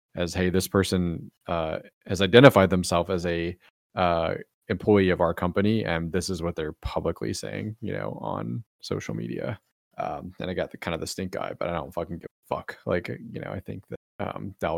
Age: 30-49